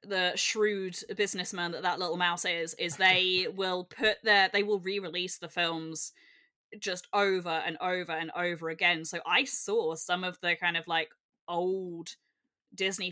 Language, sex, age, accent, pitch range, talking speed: English, female, 10-29, British, 175-235 Hz, 165 wpm